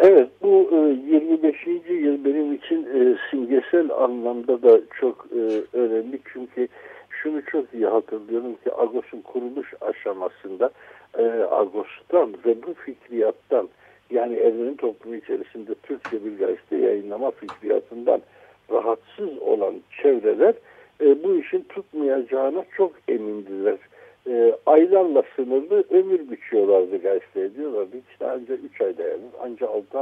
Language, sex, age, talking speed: Turkish, male, 60-79, 105 wpm